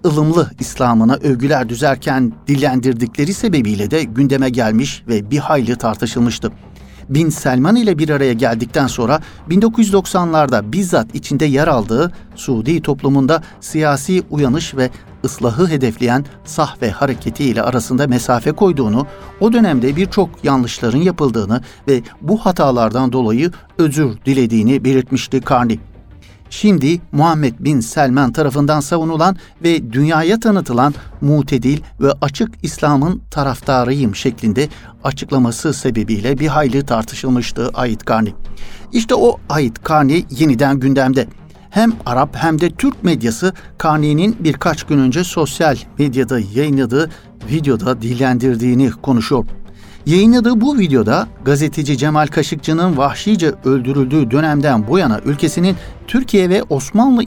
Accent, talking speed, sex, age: native, 115 wpm, male, 60-79